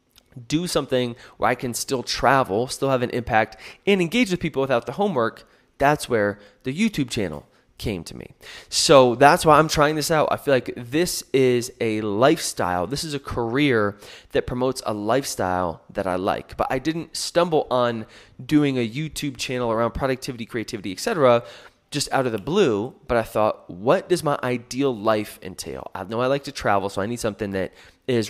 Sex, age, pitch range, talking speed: male, 20-39, 110-145 Hz, 195 wpm